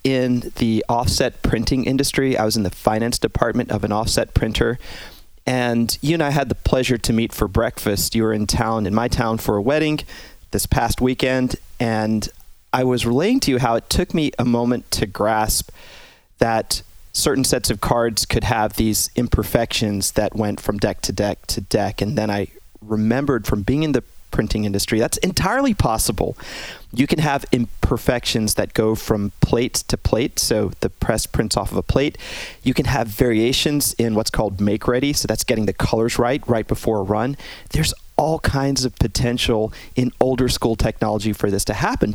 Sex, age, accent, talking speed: male, 30-49, American, 190 wpm